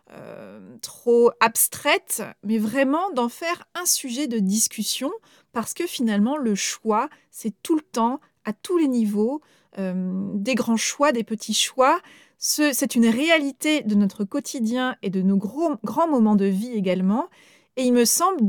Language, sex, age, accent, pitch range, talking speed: French, female, 30-49, French, 200-280 Hz, 160 wpm